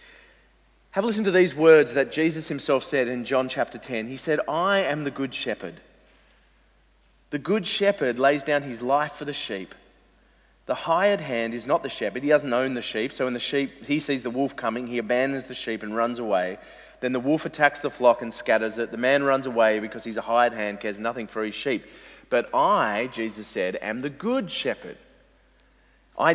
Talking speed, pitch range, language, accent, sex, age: 205 wpm, 115-145 Hz, English, Australian, male, 30-49